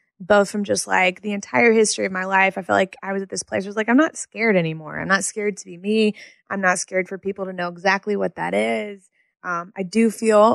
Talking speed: 260 wpm